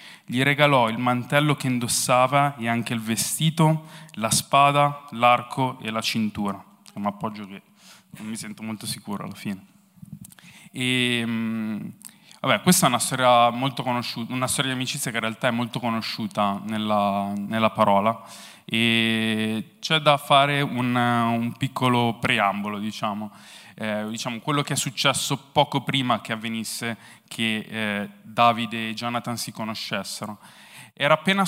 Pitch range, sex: 115-140 Hz, male